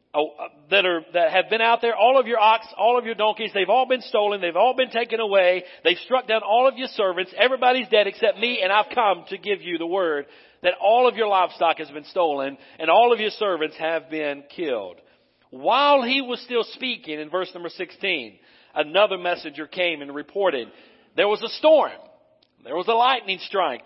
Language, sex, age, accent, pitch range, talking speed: English, male, 50-69, American, 165-235 Hz, 205 wpm